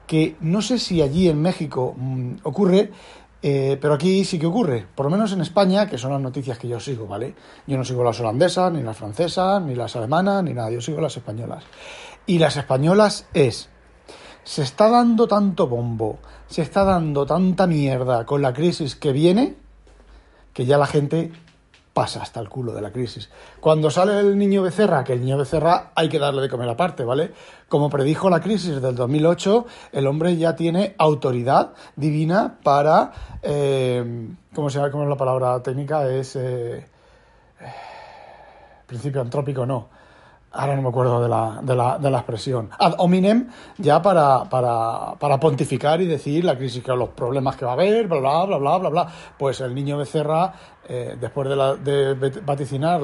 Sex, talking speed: male, 180 wpm